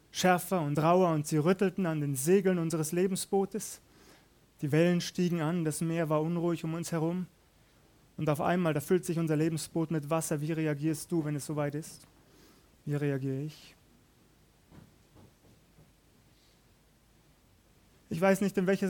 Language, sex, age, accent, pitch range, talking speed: German, male, 30-49, German, 155-170 Hz, 150 wpm